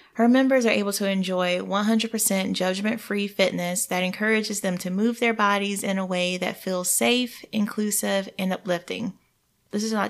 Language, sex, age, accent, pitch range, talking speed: English, female, 20-39, American, 185-220 Hz, 165 wpm